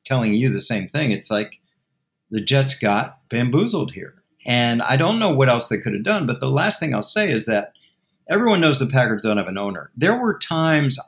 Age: 50-69